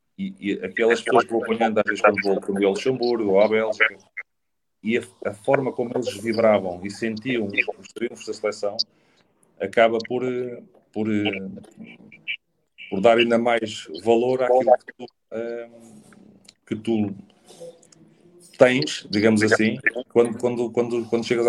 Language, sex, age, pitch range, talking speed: English, male, 40-59, 105-125 Hz, 135 wpm